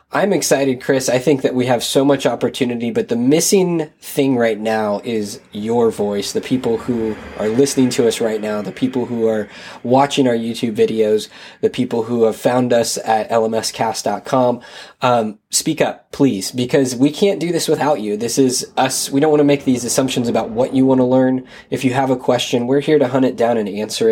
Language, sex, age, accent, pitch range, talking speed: English, male, 20-39, American, 115-140 Hz, 210 wpm